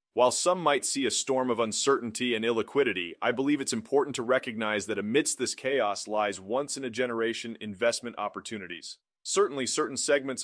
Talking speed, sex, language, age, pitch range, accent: 155 wpm, male, English, 30-49, 115-135 Hz, American